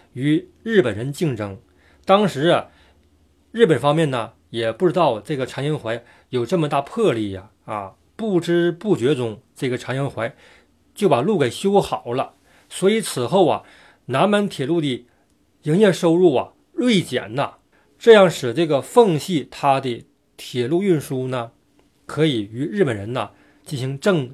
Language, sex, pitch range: Chinese, male, 120-175 Hz